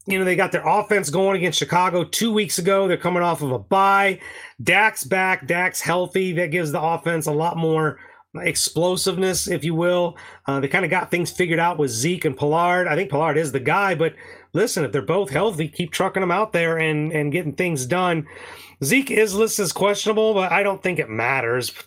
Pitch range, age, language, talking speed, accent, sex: 140-185 Hz, 30-49, English, 215 wpm, American, male